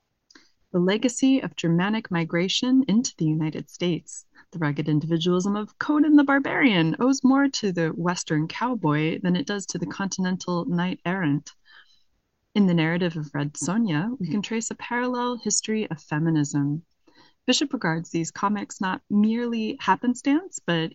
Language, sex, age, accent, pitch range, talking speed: English, female, 20-39, American, 155-215 Hz, 145 wpm